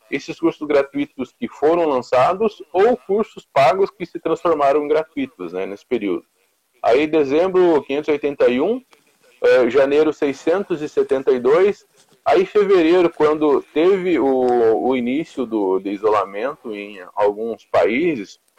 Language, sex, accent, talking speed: Portuguese, male, Brazilian, 110 wpm